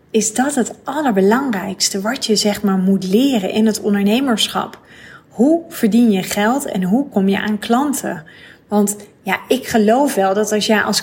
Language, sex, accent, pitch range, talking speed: Dutch, female, Dutch, 200-230 Hz, 175 wpm